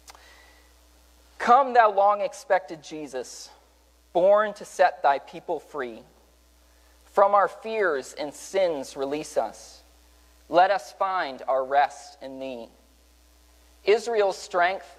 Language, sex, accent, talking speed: English, male, American, 105 wpm